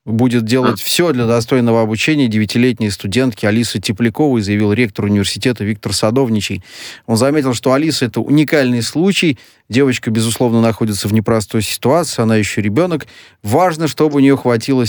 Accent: native